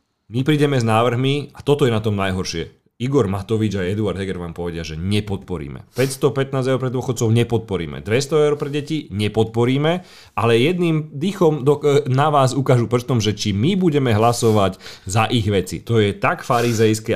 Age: 40-59